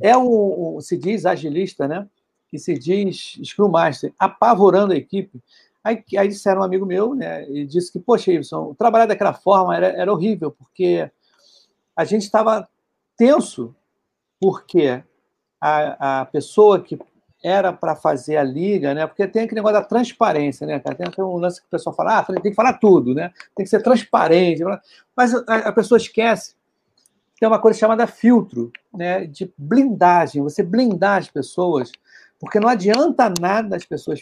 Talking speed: 170 wpm